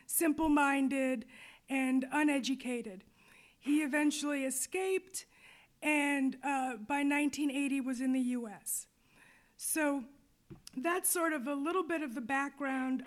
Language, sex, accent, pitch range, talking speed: English, female, American, 265-320 Hz, 110 wpm